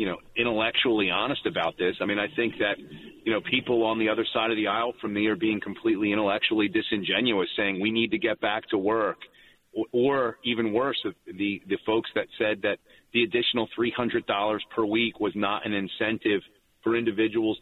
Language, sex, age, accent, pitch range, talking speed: English, male, 40-59, American, 110-125 Hz, 200 wpm